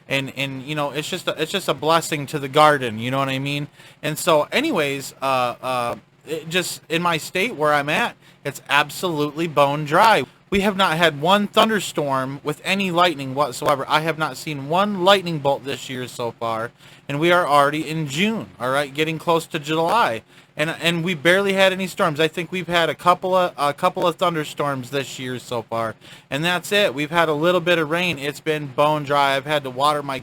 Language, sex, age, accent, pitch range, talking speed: English, male, 20-39, American, 140-170 Hz, 215 wpm